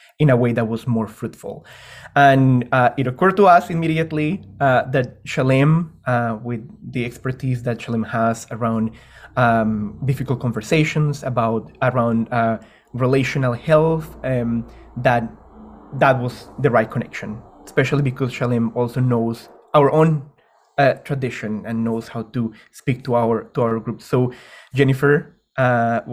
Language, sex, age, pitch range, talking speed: English, male, 20-39, 120-140 Hz, 145 wpm